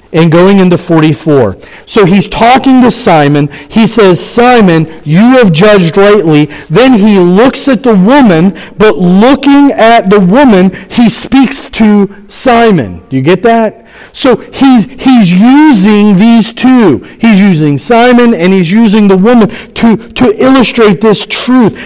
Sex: male